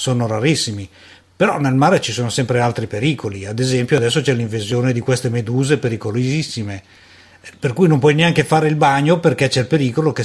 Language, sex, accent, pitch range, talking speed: Italian, male, native, 120-150 Hz, 185 wpm